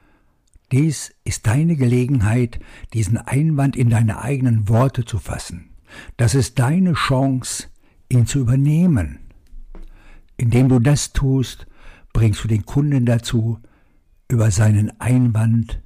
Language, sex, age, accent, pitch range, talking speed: German, male, 60-79, German, 105-130 Hz, 115 wpm